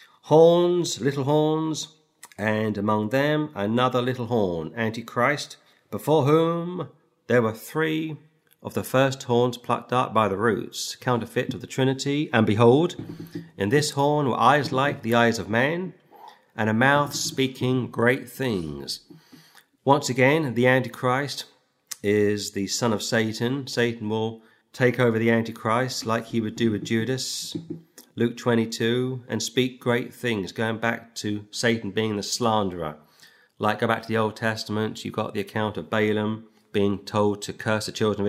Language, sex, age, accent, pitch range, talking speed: English, male, 40-59, British, 105-130 Hz, 155 wpm